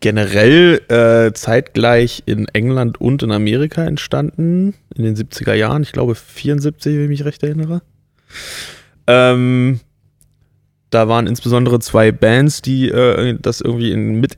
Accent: German